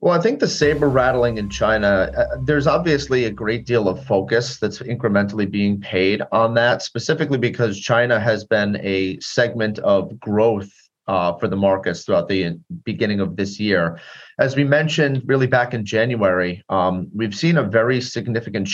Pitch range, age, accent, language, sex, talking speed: 95-125 Hz, 30-49, American, English, male, 175 wpm